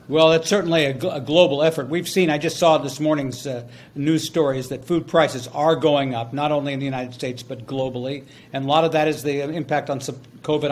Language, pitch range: English, 135-170 Hz